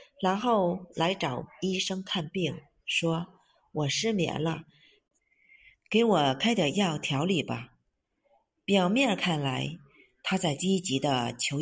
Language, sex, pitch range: Chinese, female, 145-195 Hz